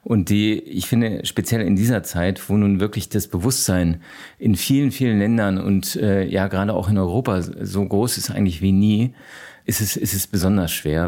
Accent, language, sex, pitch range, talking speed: German, German, male, 100-125 Hz, 195 wpm